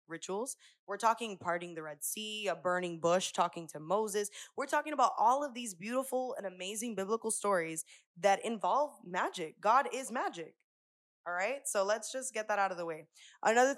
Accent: American